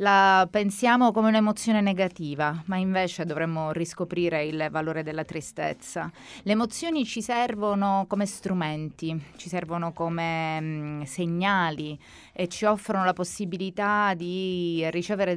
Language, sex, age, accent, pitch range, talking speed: Italian, female, 20-39, native, 165-210 Hz, 115 wpm